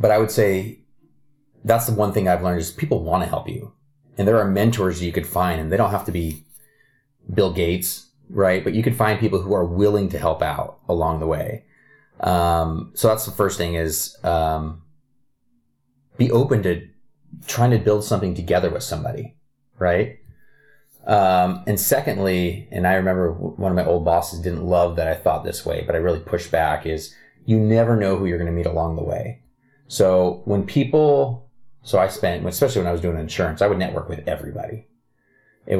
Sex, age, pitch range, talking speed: male, 30-49, 90-115 Hz, 200 wpm